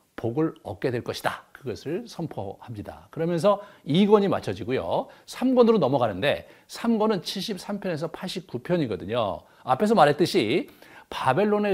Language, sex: Korean, male